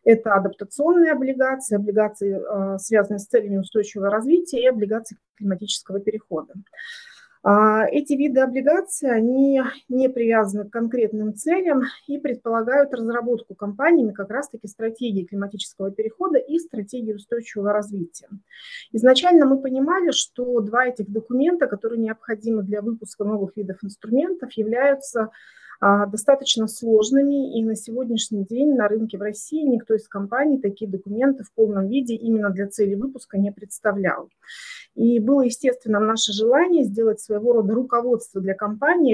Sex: female